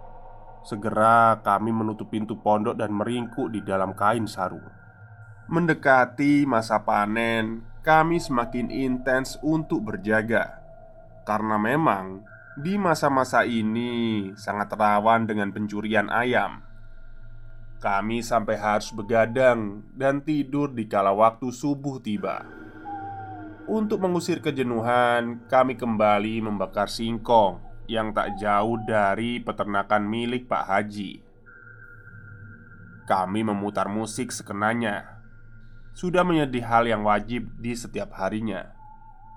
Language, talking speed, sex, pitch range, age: Indonesian, 100 wpm, male, 105-130 Hz, 20-39